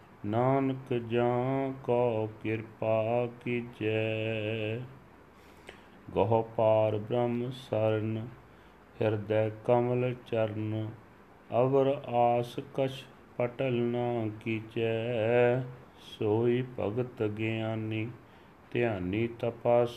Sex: male